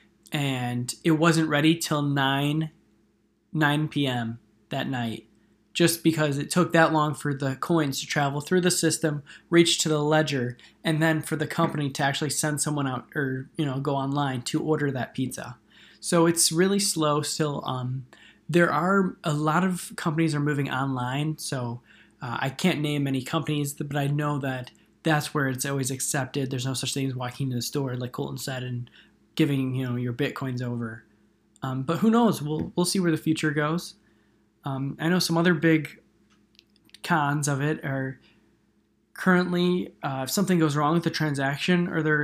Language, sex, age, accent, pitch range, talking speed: English, male, 20-39, American, 130-160 Hz, 180 wpm